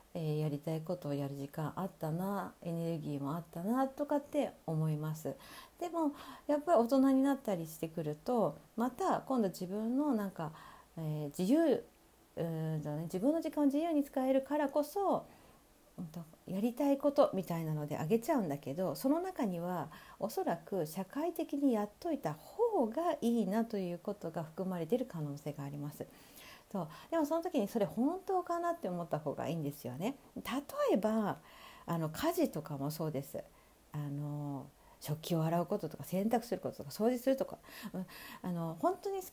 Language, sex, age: Japanese, female, 50-69